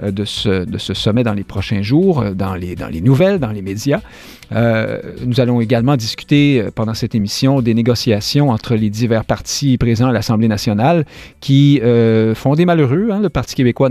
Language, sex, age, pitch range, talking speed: French, male, 50-69, 110-145 Hz, 190 wpm